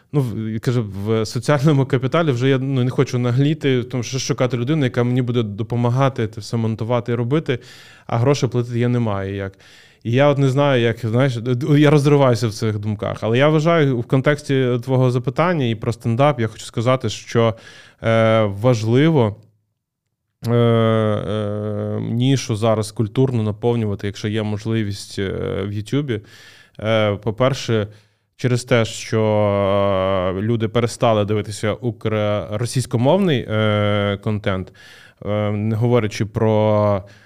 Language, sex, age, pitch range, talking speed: Ukrainian, male, 20-39, 105-125 Hz, 135 wpm